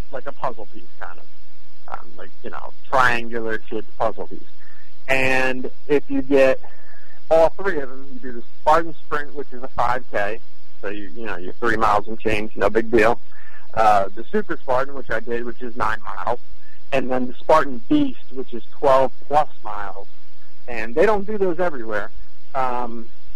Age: 40-59